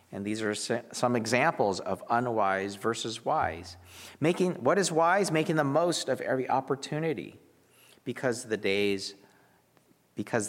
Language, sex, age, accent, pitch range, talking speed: English, male, 40-59, American, 100-160 Hz, 130 wpm